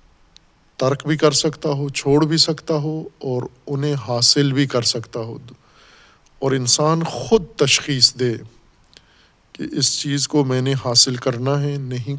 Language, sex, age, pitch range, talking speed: Urdu, male, 50-69, 125-150 Hz, 155 wpm